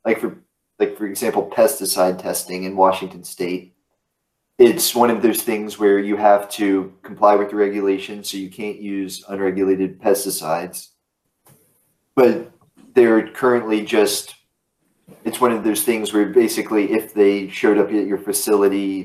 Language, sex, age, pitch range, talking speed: English, male, 30-49, 95-110 Hz, 150 wpm